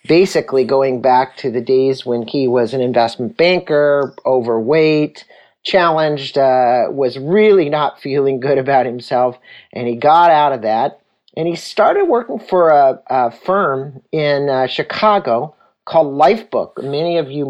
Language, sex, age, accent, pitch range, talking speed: English, male, 50-69, American, 125-155 Hz, 150 wpm